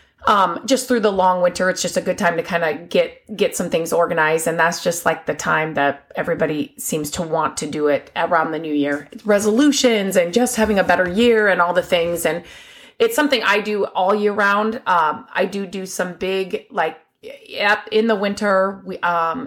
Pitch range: 175-240 Hz